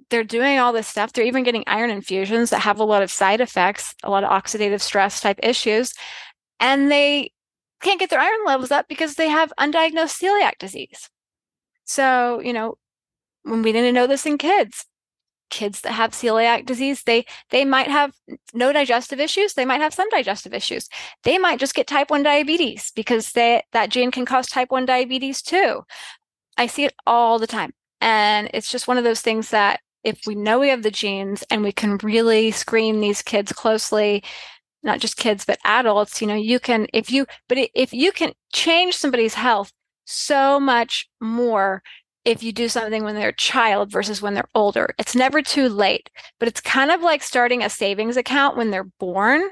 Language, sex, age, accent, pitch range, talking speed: English, female, 20-39, American, 215-275 Hz, 195 wpm